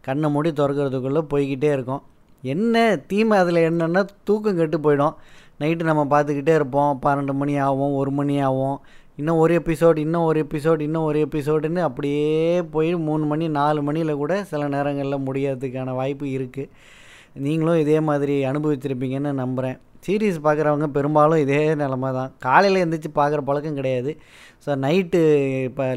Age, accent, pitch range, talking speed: 20-39, native, 135-160 Hz, 145 wpm